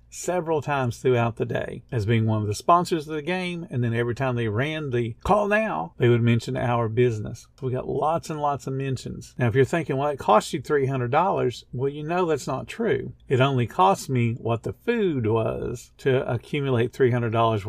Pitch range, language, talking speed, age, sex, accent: 115-135 Hz, English, 205 wpm, 50-69, male, American